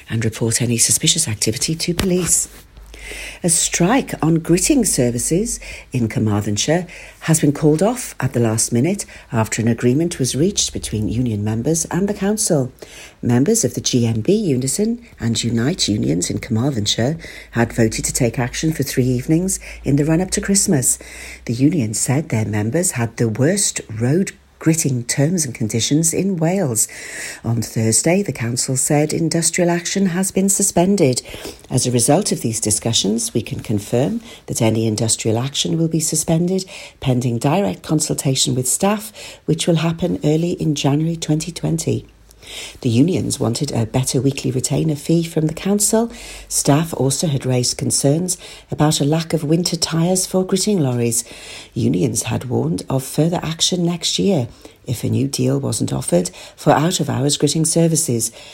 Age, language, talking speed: 60-79, English, 155 wpm